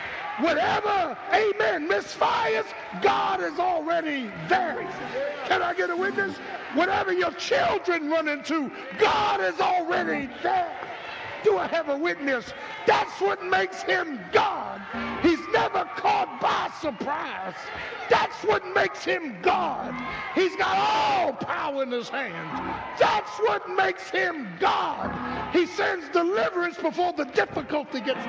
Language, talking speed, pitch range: English, 125 wpm, 310-395 Hz